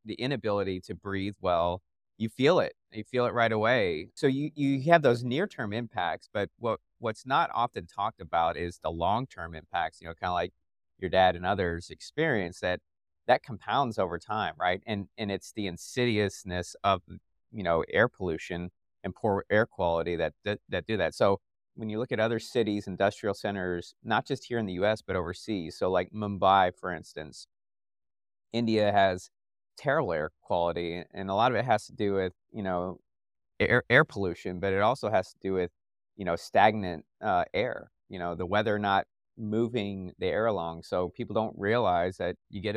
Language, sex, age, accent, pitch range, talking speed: English, male, 30-49, American, 90-110 Hz, 190 wpm